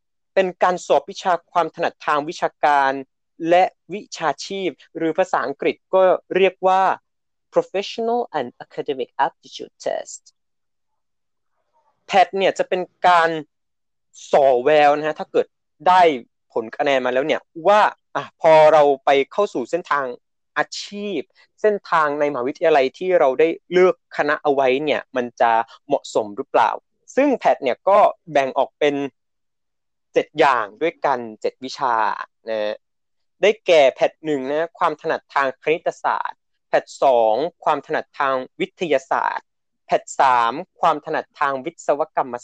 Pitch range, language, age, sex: 145-210 Hz, Thai, 20-39, male